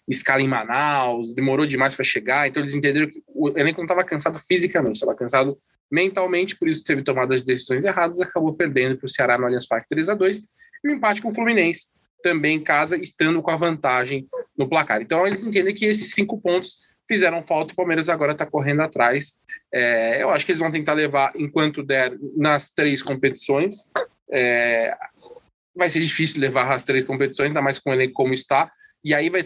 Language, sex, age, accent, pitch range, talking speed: Portuguese, male, 20-39, Brazilian, 135-175 Hz, 200 wpm